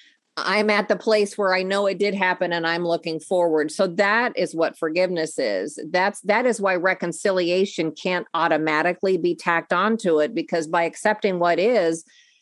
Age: 50-69